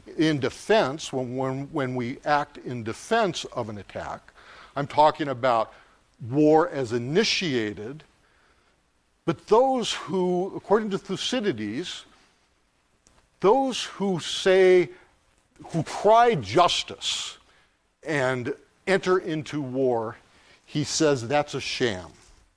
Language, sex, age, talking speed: English, male, 60-79, 100 wpm